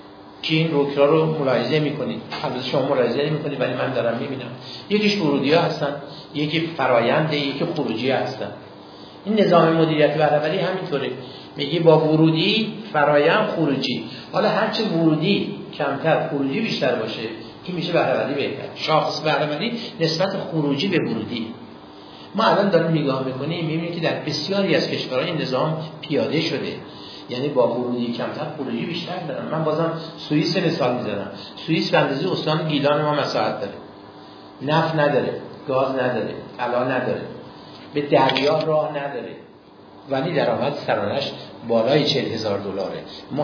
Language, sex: Persian, male